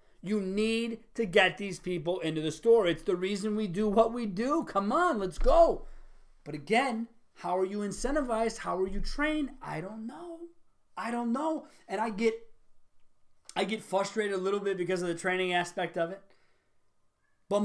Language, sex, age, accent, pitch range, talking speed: English, male, 30-49, American, 185-255 Hz, 185 wpm